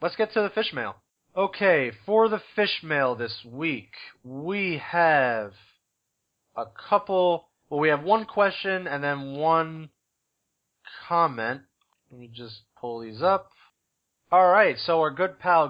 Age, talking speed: 20-39, 145 wpm